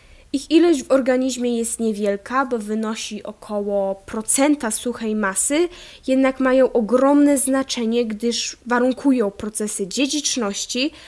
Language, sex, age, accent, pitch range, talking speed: Polish, female, 10-29, native, 225-280 Hz, 110 wpm